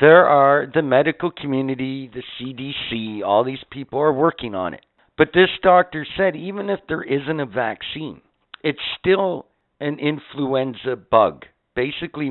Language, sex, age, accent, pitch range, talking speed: English, male, 60-79, American, 105-145 Hz, 145 wpm